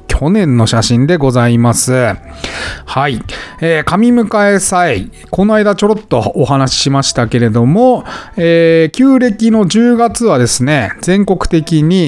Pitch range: 125-185 Hz